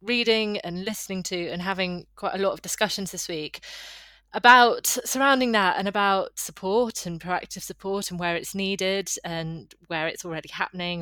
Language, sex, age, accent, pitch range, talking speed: English, female, 20-39, British, 170-205 Hz, 170 wpm